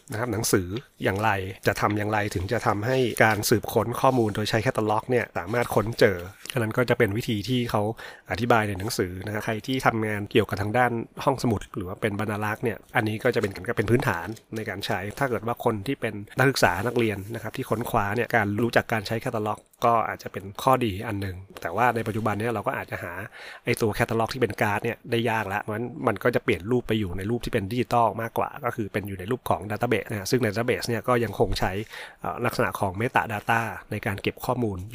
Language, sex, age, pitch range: Thai, male, 30-49, 105-120 Hz